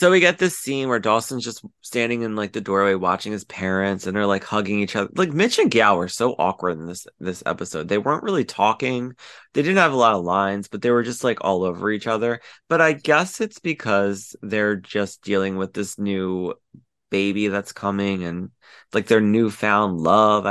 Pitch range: 95-120 Hz